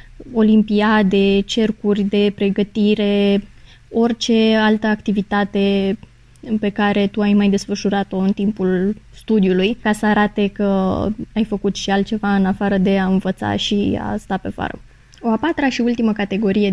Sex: female